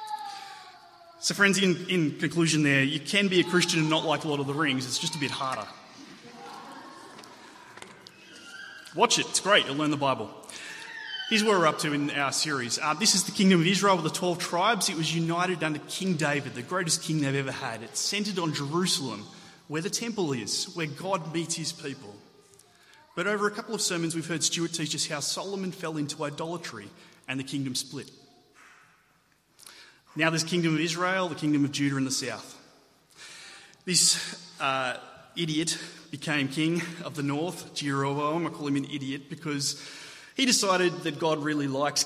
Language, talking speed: English, 185 wpm